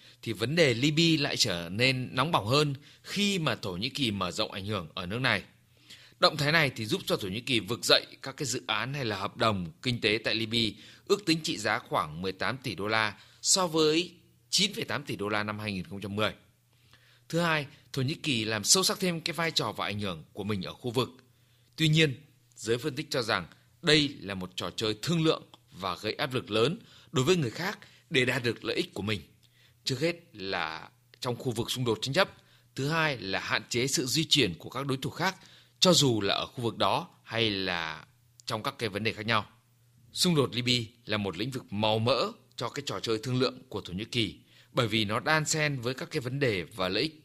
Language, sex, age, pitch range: Vietnamese, male, 20-39, 110-145 Hz